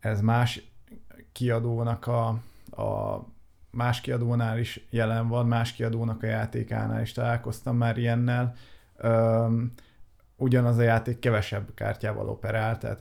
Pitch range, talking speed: 110-125 Hz, 115 wpm